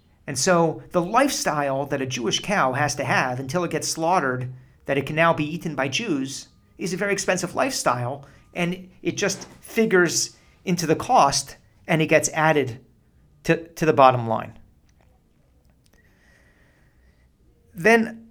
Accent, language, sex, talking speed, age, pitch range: American, English, male, 150 wpm, 40-59, 95-145 Hz